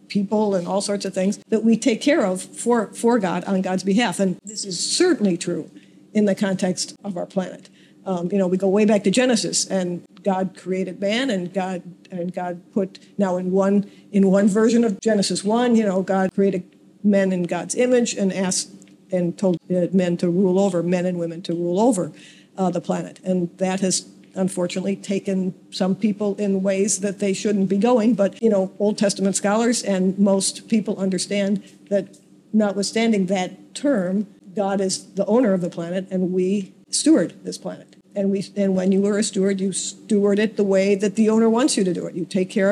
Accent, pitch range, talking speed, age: American, 185-215 Hz, 200 wpm, 50-69